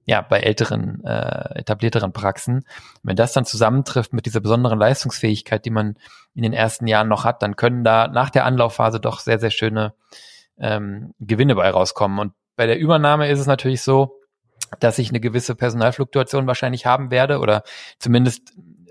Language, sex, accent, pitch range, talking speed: German, male, German, 110-130 Hz, 175 wpm